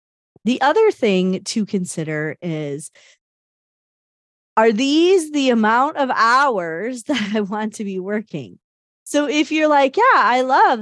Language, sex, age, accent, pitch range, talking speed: English, female, 30-49, American, 180-270 Hz, 140 wpm